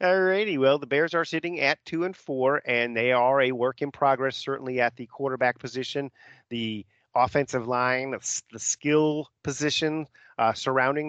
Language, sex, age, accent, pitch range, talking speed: English, male, 40-59, American, 120-145 Hz, 170 wpm